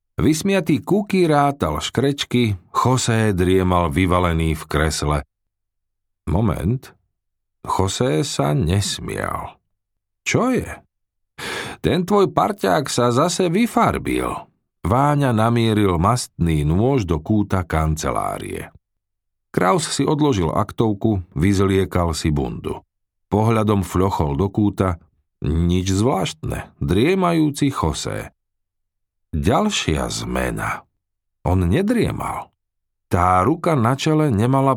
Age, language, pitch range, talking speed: 50-69, Slovak, 90-130 Hz, 90 wpm